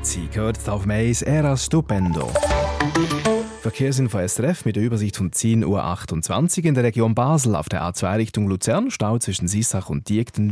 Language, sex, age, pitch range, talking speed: German, male, 30-49, 100-135 Hz, 155 wpm